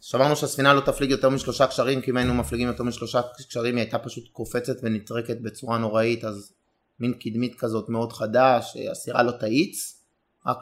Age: 30-49